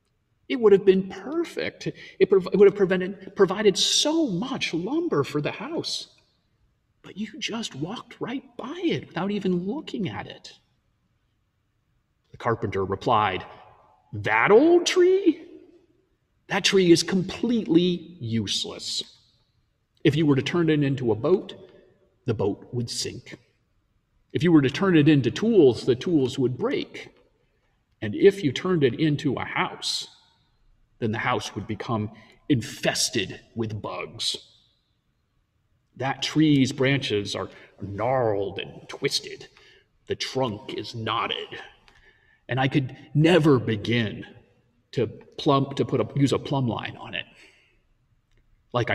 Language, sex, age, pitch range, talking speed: English, male, 40-59, 115-190 Hz, 130 wpm